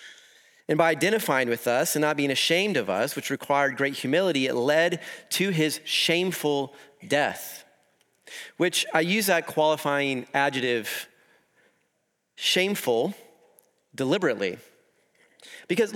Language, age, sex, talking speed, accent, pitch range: English, 30-49, male, 115 wpm, American, 140-190 Hz